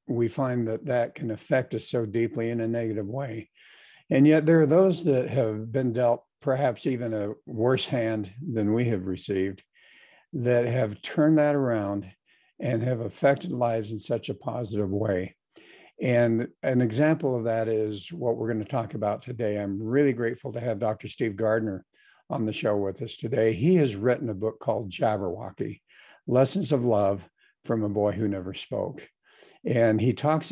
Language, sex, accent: English, male, American